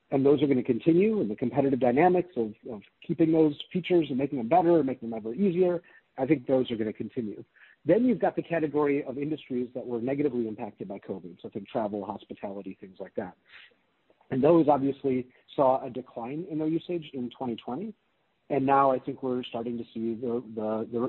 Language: English